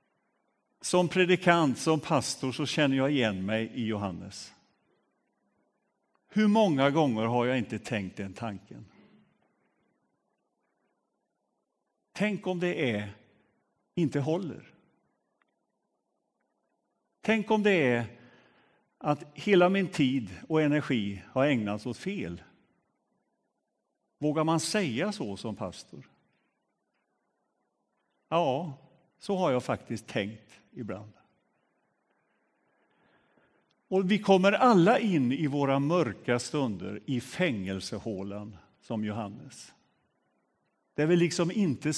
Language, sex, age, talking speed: Swedish, male, 50-69, 100 wpm